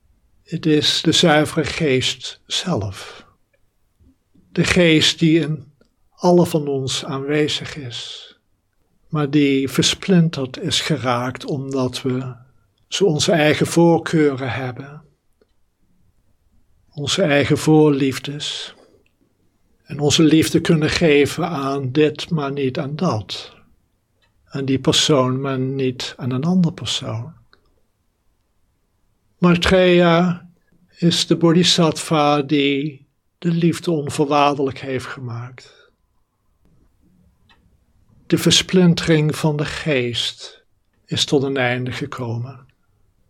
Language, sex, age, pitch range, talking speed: Dutch, male, 60-79, 110-160 Hz, 95 wpm